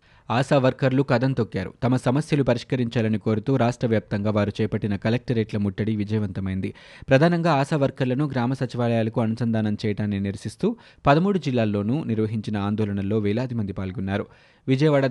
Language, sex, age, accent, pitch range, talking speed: Telugu, male, 20-39, native, 105-135 Hz, 125 wpm